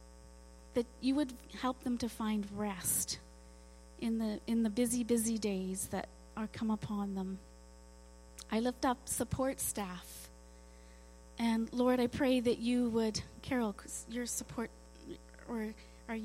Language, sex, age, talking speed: English, female, 30-49, 135 wpm